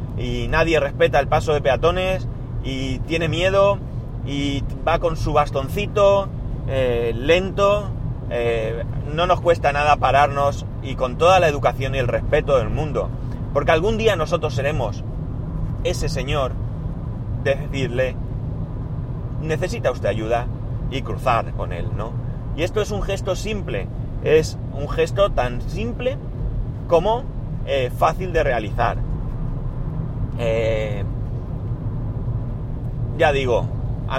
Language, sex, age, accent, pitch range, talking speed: Spanish, male, 30-49, Spanish, 120-140 Hz, 125 wpm